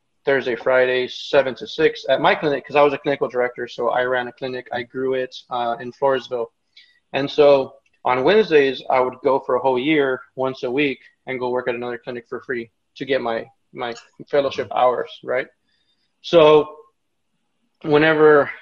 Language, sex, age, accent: English, male, 20-39, American